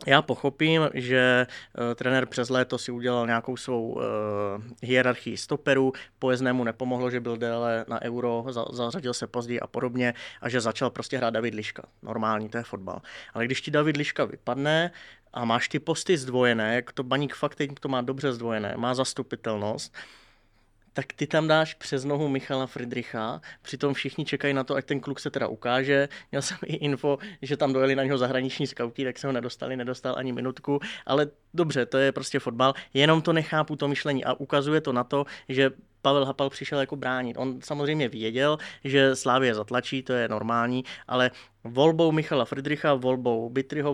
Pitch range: 125-140 Hz